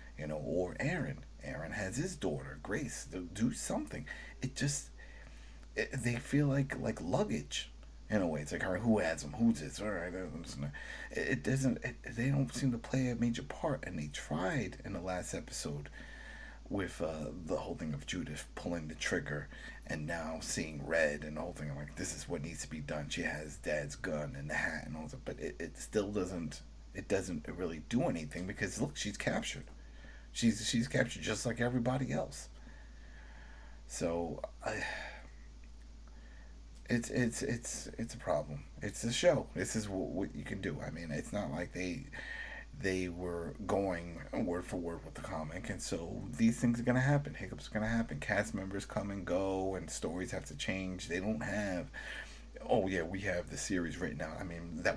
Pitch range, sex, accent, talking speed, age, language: 75-120 Hz, male, American, 185 wpm, 40-59, English